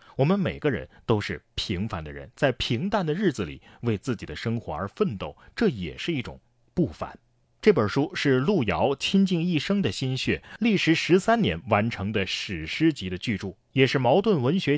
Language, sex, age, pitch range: Chinese, male, 30-49, 100-145 Hz